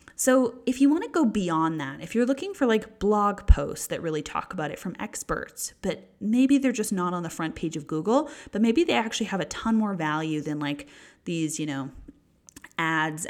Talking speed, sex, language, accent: 215 wpm, female, English, American